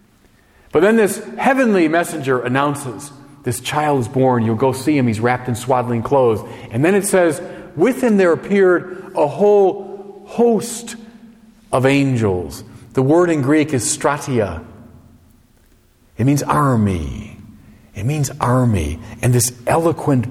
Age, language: 40-59, English